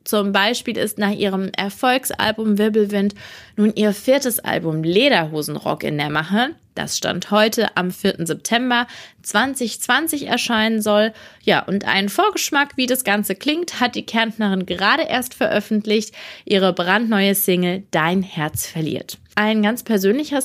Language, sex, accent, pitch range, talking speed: German, female, German, 180-235 Hz, 140 wpm